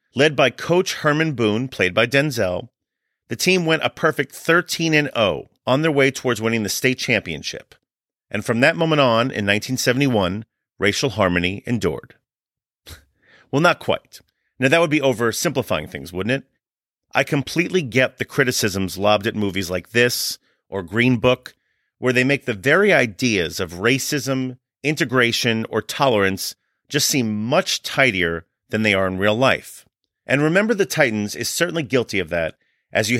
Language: English